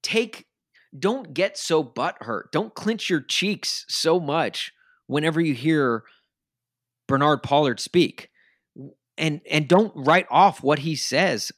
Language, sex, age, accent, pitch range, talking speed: English, male, 30-49, American, 125-175 Hz, 135 wpm